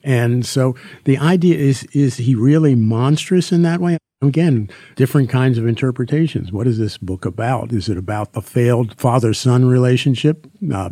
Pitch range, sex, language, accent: 110-140 Hz, male, English, American